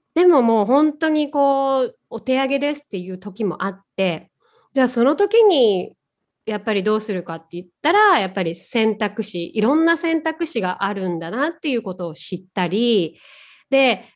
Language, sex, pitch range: Japanese, female, 185-275 Hz